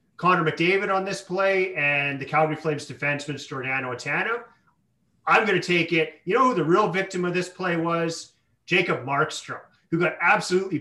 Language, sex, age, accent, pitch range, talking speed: English, male, 30-49, American, 145-175 Hz, 180 wpm